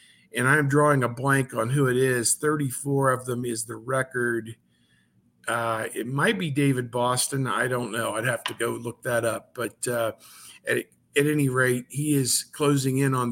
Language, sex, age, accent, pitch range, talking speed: English, male, 50-69, American, 125-150 Hz, 190 wpm